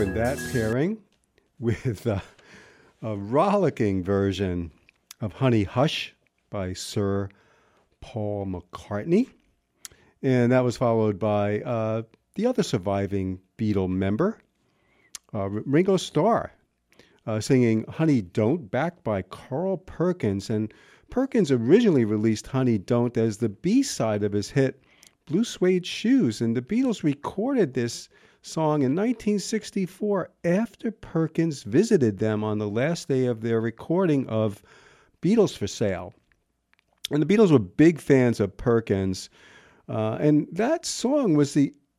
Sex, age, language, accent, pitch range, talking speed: male, 50-69, English, American, 110-170 Hz, 125 wpm